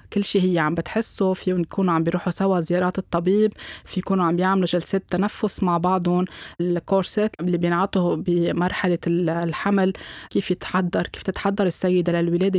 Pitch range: 170-195 Hz